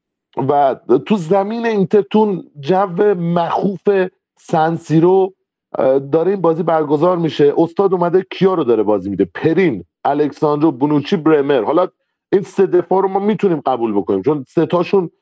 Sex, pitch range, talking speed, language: male, 155-195 Hz, 140 wpm, Persian